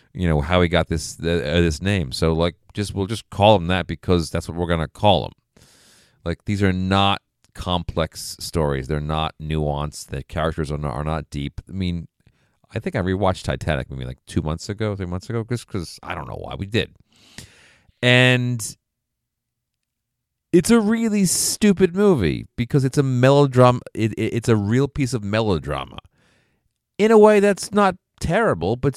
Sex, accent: male, American